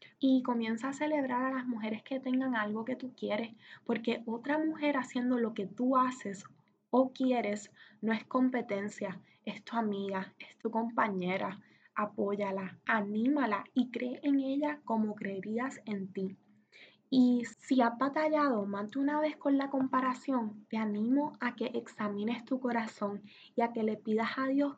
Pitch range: 205-255 Hz